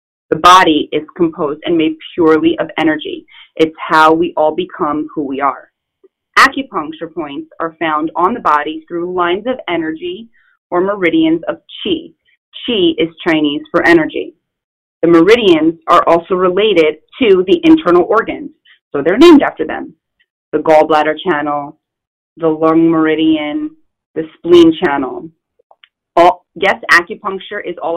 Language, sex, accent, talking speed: English, female, American, 135 wpm